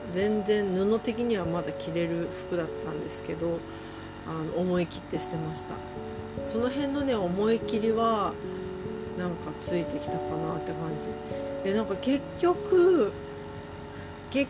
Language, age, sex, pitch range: Japanese, 40-59, female, 140-220 Hz